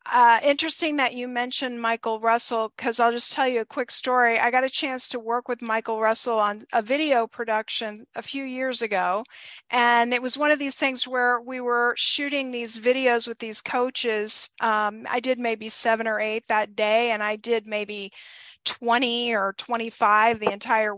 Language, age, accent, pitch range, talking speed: English, 40-59, American, 230-260 Hz, 190 wpm